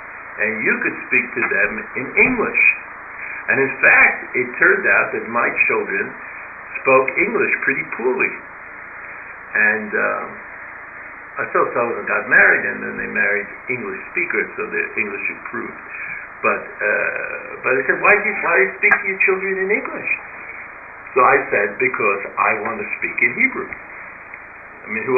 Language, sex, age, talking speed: English, male, 60-79, 165 wpm